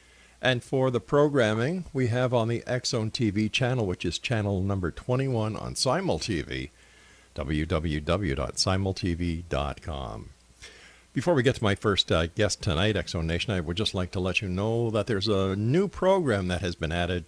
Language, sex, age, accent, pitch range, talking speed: English, male, 50-69, American, 80-110 Hz, 165 wpm